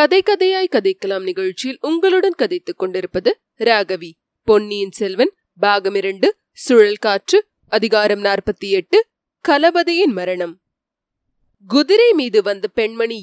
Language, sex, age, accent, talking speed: Tamil, female, 30-49, native, 45 wpm